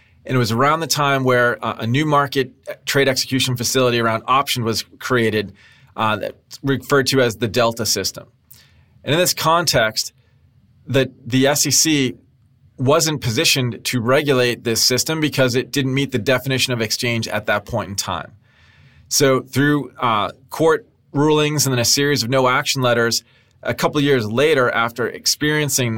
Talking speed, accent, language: 165 wpm, American, English